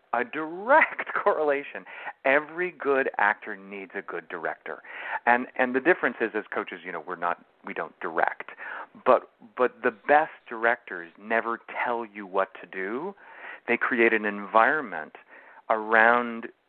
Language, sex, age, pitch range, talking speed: English, male, 40-59, 100-125 Hz, 145 wpm